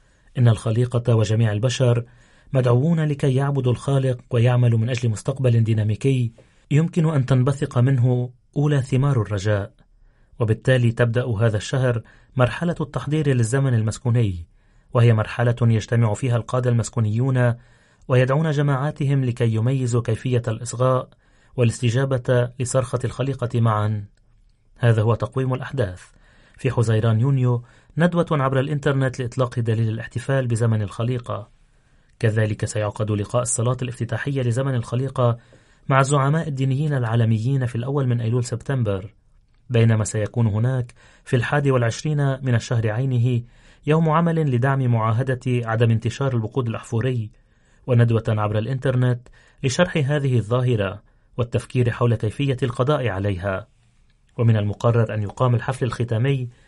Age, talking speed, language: 30-49, 115 wpm, Arabic